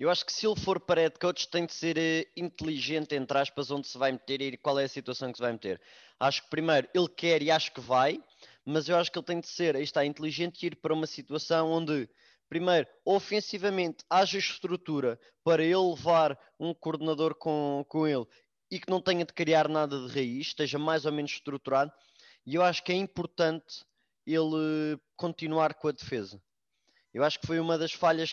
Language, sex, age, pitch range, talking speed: English, male, 20-39, 155-175 Hz, 200 wpm